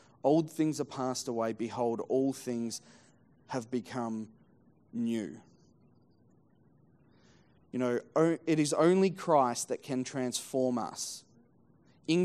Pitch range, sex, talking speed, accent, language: 130-160 Hz, male, 110 wpm, Australian, English